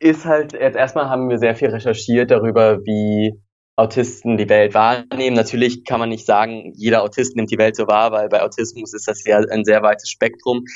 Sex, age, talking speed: male, 20-39, 205 wpm